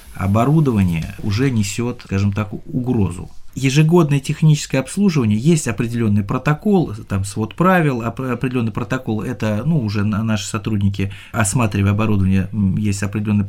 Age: 20-39